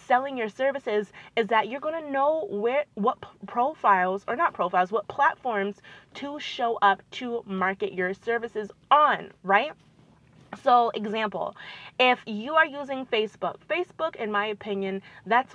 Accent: American